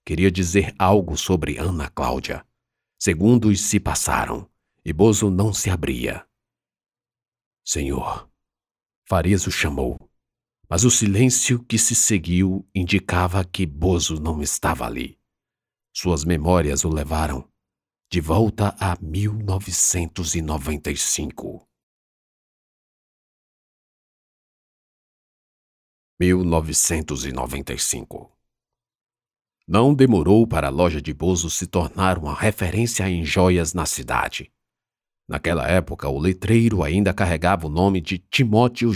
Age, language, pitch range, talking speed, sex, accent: 50-69, Portuguese, 80-105 Hz, 100 wpm, male, Brazilian